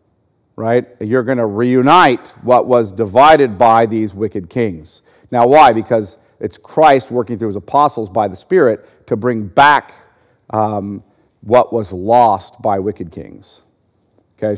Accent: American